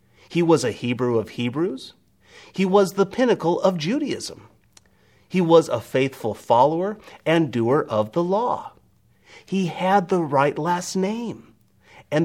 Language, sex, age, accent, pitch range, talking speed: English, male, 40-59, American, 105-170 Hz, 140 wpm